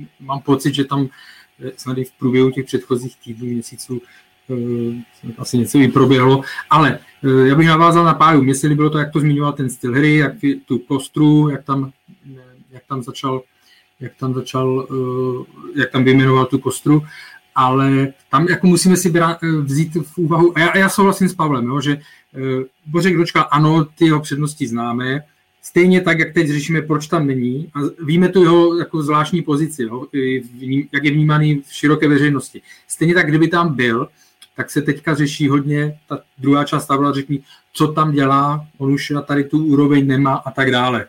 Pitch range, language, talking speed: 130-150 Hz, Czech, 180 wpm